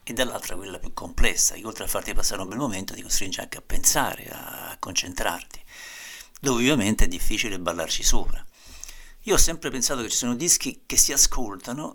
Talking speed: 185 wpm